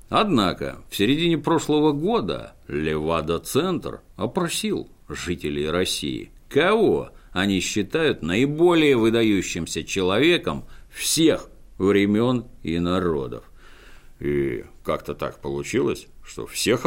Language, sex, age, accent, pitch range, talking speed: Russian, male, 50-69, native, 80-125 Hz, 95 wpm